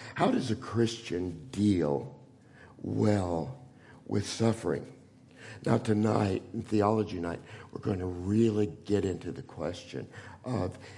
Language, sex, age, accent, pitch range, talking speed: English, male, 60-79, American, 90-125 Hz, 120 wpm